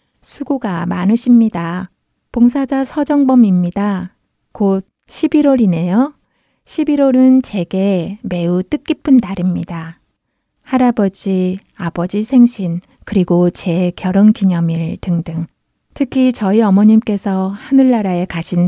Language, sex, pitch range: Korean, female, 180-230 Hz